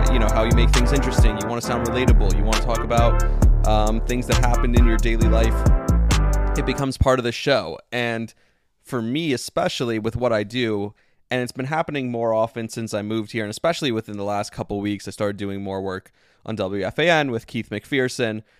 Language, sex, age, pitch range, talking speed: English, male, 20-39, 100-120 Hz, 215 wpm